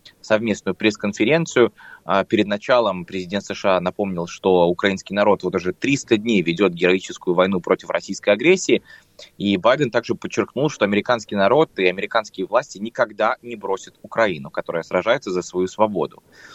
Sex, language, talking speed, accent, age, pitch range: male, Russian, 140 wpm, native, 20-39, 95-120 Hz